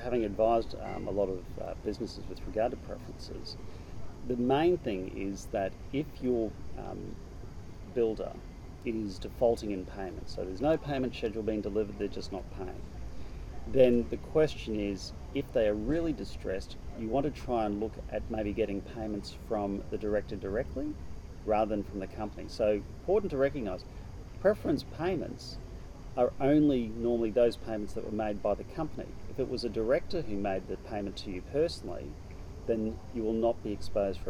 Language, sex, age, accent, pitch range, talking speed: English, male, 40-59, Australian, 95-120 Hz, 175 wpm